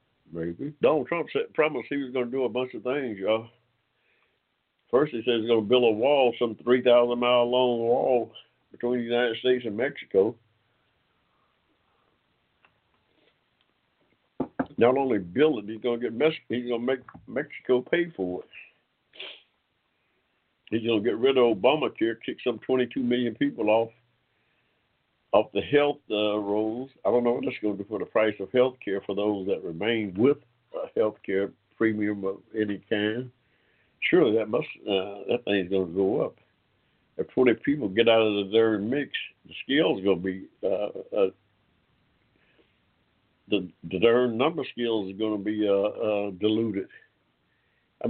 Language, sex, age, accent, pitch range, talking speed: English, male, 60-79, American, 105-125 Hz, 165 wpm